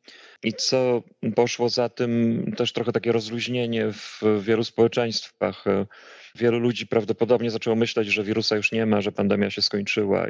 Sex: male